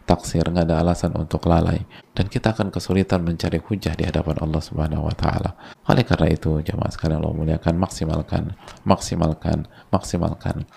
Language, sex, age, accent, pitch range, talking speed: Indonesian, male, 20-39, native, 80-95 Hz, 155 wpm